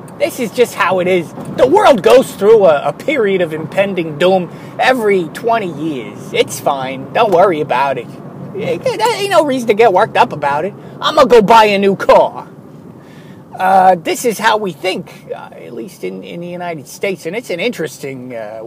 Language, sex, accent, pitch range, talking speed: English, male, American, 145-195 Hz, 200 wpm